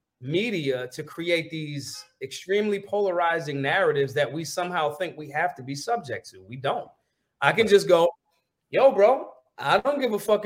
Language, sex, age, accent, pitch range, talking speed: English, male, 30-49, American, 145-200 Hz, 170 wpm